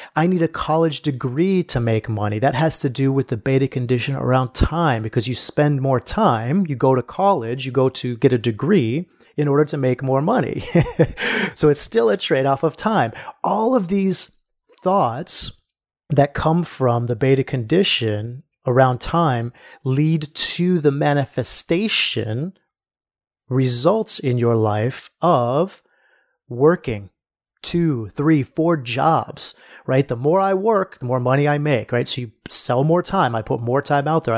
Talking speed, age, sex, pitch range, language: 165 wpm, 30-49, male, 125-160 Hz, English